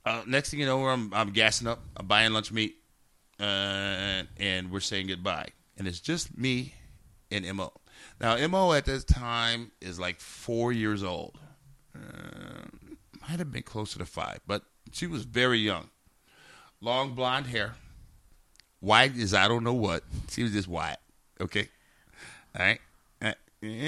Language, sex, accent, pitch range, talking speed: English, male, American, 95-130 Hz, 155 wpm